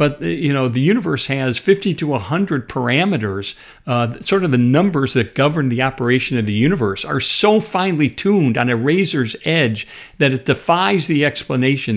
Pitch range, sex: 120-170 Hz, male